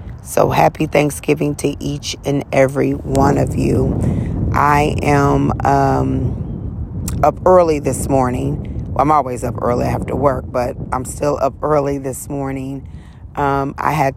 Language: English